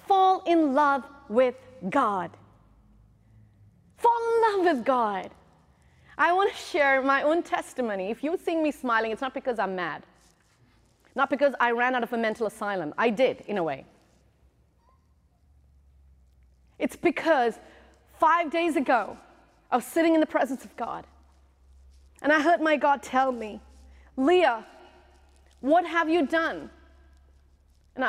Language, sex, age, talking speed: English, female, 30-49, 145 wpm